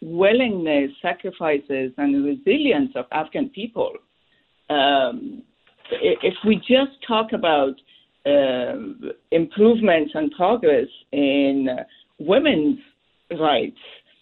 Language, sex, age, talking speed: English, female, 60-79, 90 wpm